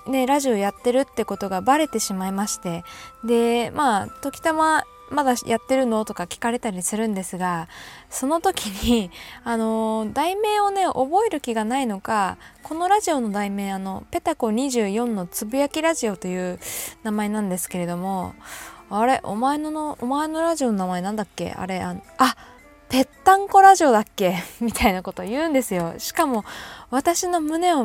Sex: female